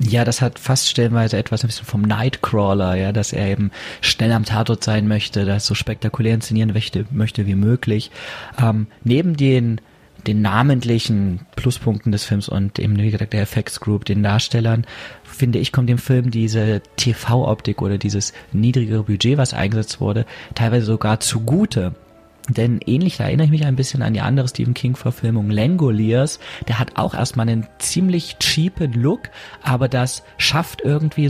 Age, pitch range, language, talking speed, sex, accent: 30-49, 110-135 Hz, German, 165 wpm, male, German